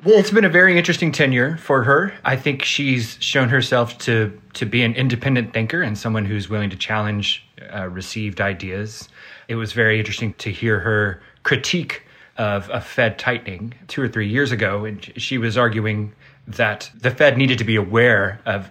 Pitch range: 100-120 Hz